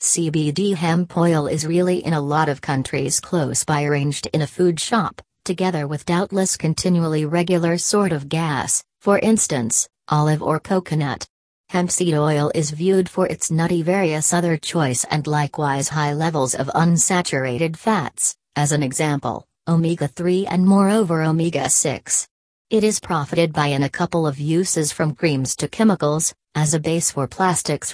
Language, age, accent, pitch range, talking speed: English, 40-59, American, 145-175 Hz, 155 wpm